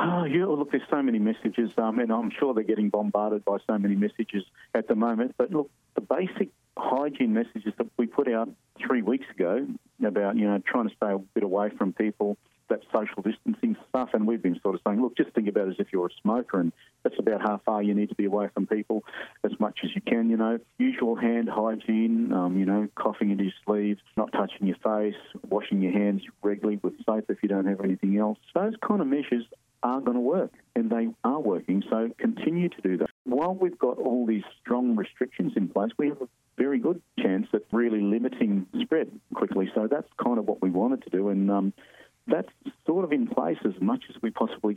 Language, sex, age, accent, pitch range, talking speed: English, male, 40-59, Australian, 105-130 Hz, 225 wpm